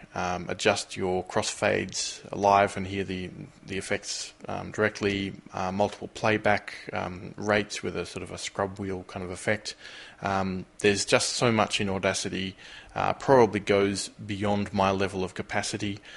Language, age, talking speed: English, 20-39, 155 wpm